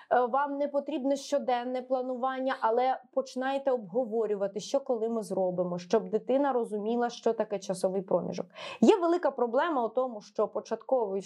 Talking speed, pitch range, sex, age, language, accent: 140 wpm, 225-310 Hz, female, 20-39, Ukrainian, native